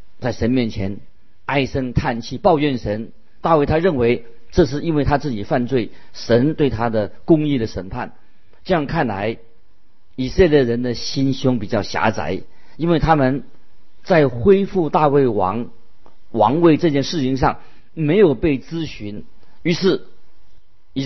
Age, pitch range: 50-69, 110-150 Hz